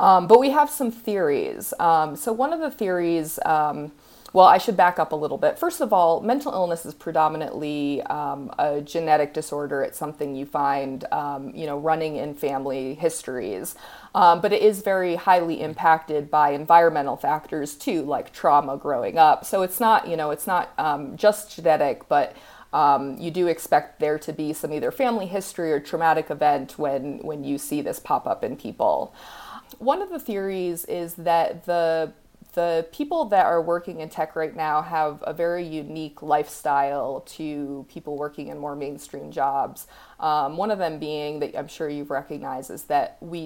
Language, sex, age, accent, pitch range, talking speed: English, female, 30-49, American, 150-180 Hz, 185 wpm